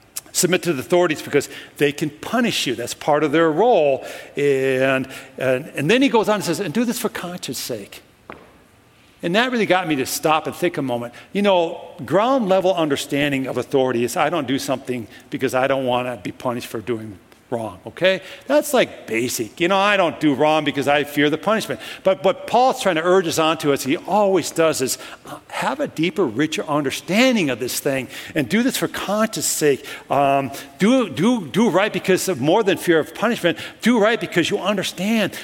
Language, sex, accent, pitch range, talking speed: English, male, American, 150-205 Hz, 210 wpm